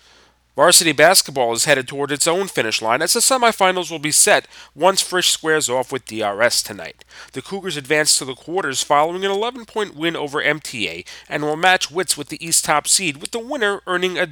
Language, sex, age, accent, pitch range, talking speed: English, male, 30-49, American, 130-175 Hz, 200 wpm